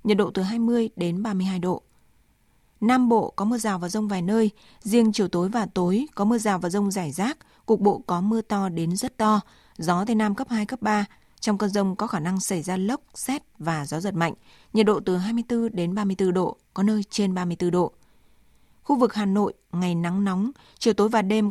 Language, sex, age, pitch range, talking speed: Vietnamese, female, 20-39, 185-220 Hz, 225 wpm